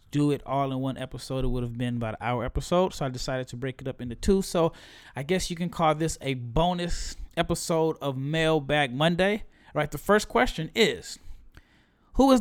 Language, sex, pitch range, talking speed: English, male, 130-165 Hz, 210 wpm